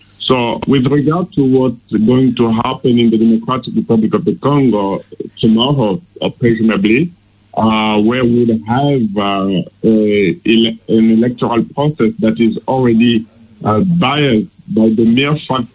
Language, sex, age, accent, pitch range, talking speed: English, male, 50-69, French, 110-135 Hz, 135 wpm